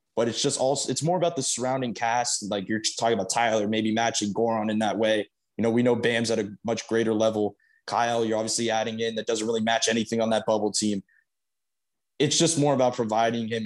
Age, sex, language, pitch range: 20-39, male, English, 110-130 Hz